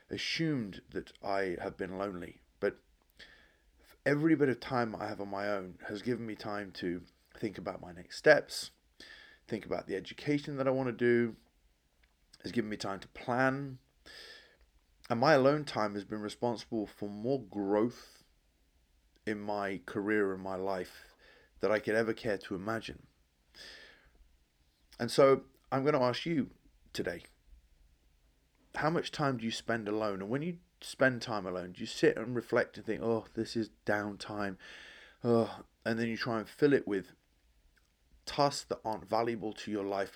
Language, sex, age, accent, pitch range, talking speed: English, male, 30-49, British, 70-120 Hz, 165 wpm